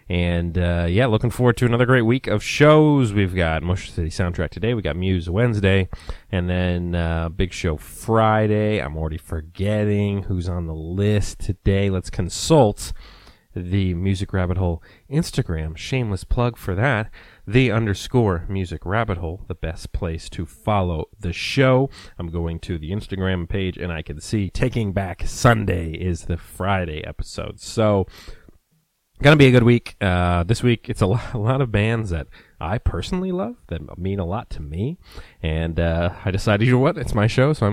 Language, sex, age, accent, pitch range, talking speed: English, male, 30-49, American, 85-115 Hz, 180 wpm